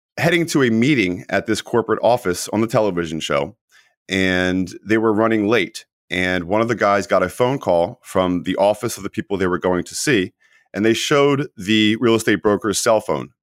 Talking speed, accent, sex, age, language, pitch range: 205 wpm, American, male, 30-49, English, 90-115 Hz